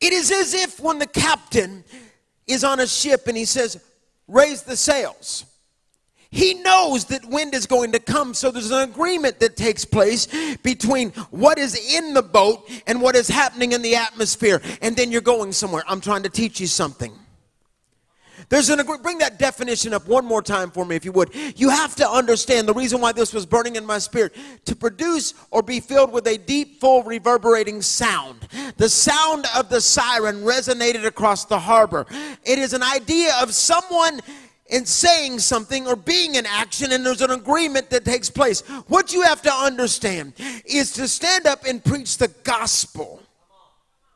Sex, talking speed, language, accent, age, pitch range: male, 185 wpm, English, American, 40-59, 225-280 Hz